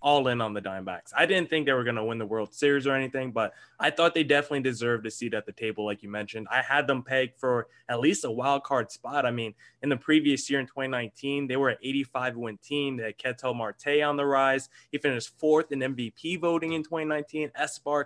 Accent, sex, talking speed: American, male, 235 wpm